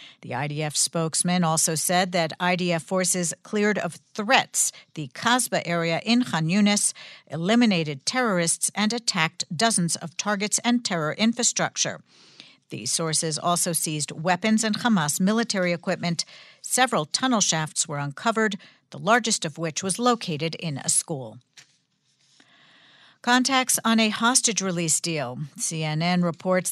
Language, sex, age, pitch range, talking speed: English, female, 50-69, 165-215 Hz, 130 wpm